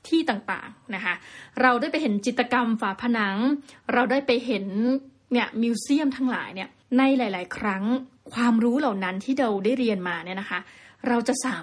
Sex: female